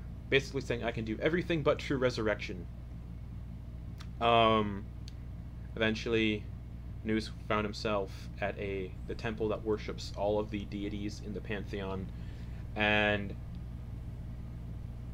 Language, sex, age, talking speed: English, male, 30-49, 110 wpm